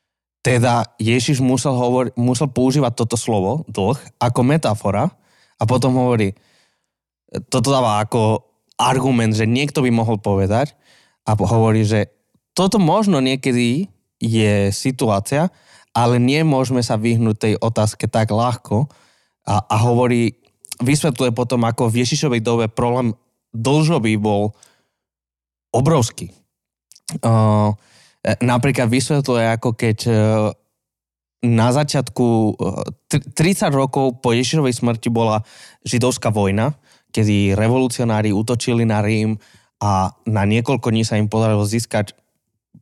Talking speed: 110 wpm